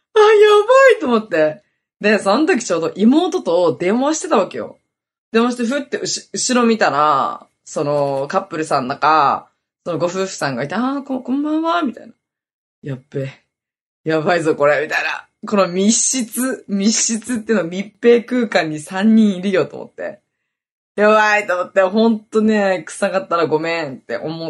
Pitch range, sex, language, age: 160-230 Hz, female, Japanese, 20-39